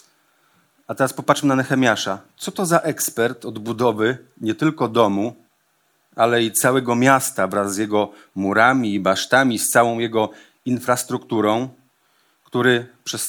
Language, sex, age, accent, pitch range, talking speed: Polish, male, 40-59, native, 110-135 Hz, 135 wpm